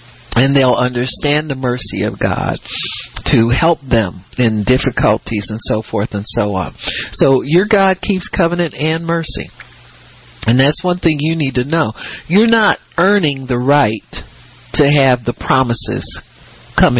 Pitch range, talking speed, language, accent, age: 110-135 Hz, 150 wpm, English, American, 50-69